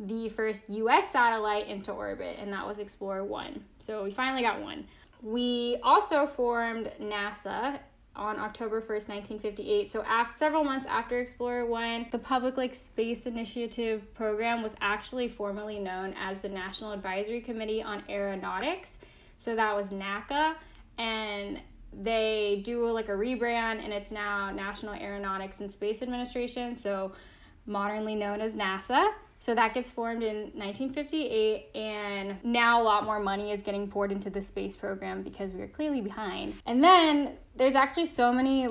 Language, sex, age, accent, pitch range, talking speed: English, female, 10-29, American, 205-240 Hz, 155 wpm